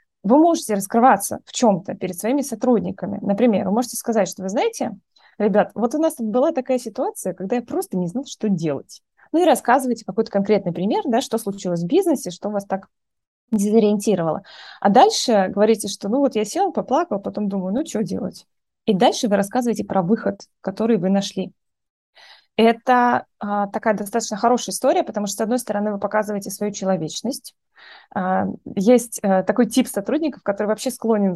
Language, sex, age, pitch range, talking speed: Russian, female, 20-39, 200-250 Hz, 170 wpm